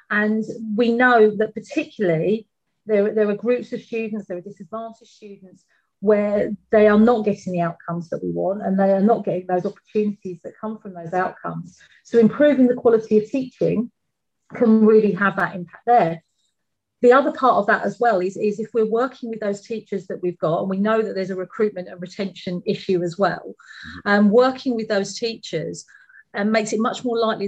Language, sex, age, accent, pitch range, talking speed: English, female, 40-59, British, 195-230 Hz, 195 wpm